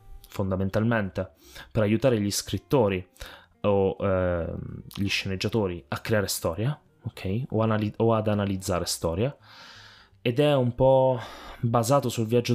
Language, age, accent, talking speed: Italian, 20-39, native, 125 wpm